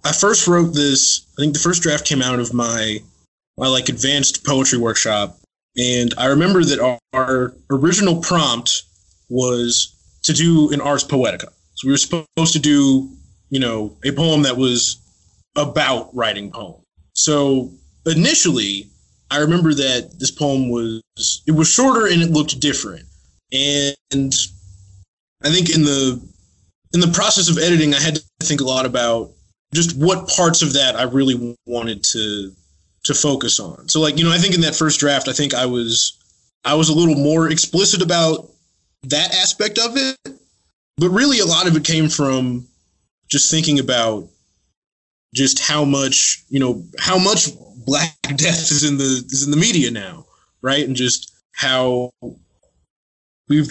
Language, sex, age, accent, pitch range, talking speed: English, male, 20-39, American, 120-155 Hz, 165 wpm